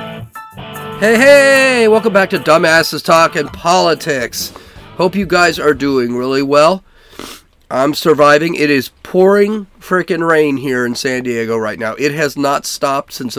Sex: male